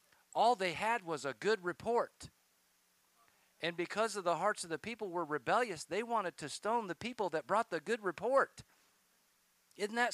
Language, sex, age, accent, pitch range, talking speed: English, male, 50-69, American, 145-205 Hz, 180 wpm